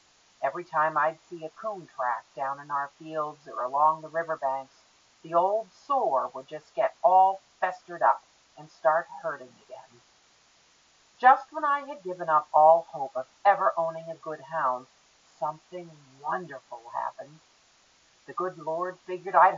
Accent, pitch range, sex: American, 135-185 Hz, female